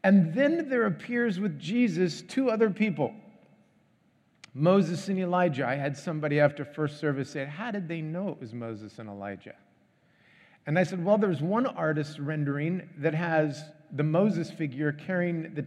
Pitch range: 150-215 Hz